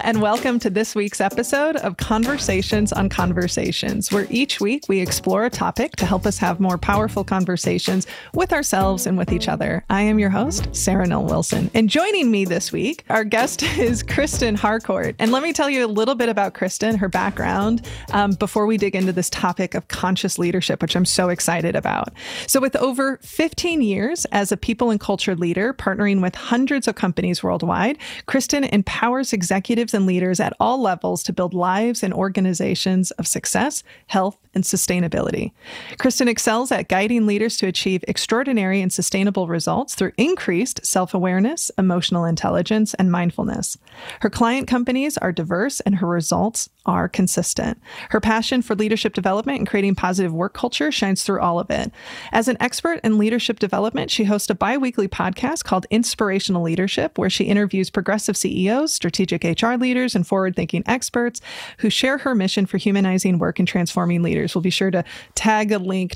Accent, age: American, 20-39